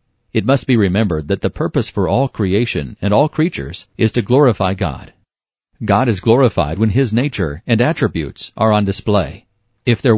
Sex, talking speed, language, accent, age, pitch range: male, 175 wpm, English, American, 40-59, 95-120 Hz